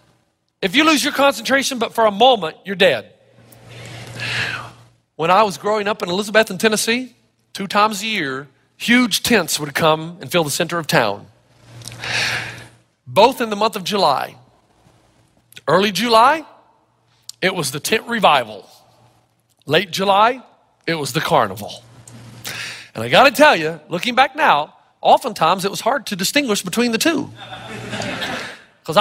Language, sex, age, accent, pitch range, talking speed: English, male, 40-59, American, 150-225 Hz, 145 wpm